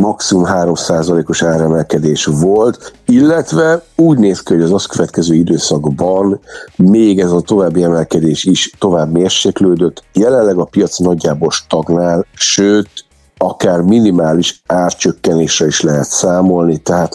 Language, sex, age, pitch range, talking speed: Hungarian, male, 50-69, 75-90 Hz, 120 wpm